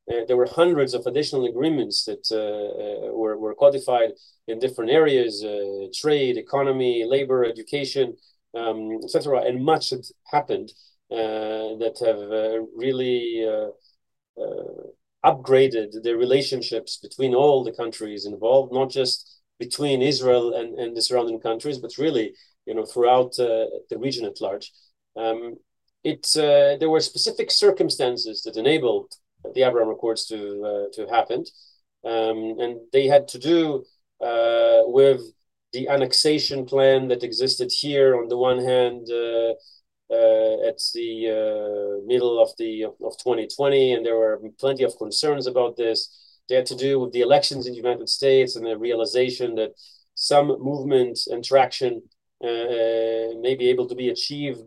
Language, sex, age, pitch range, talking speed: English, male, 30-49, 115-145 Hz, 155 wpm